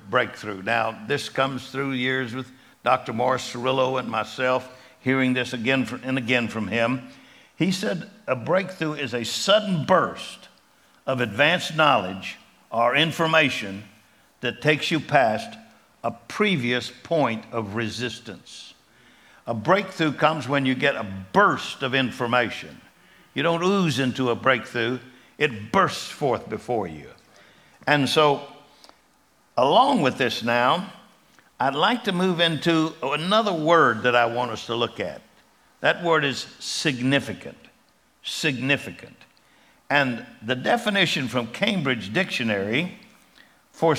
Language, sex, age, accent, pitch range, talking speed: English, male, 60-79, American, 120-160 Hz, 130 wpm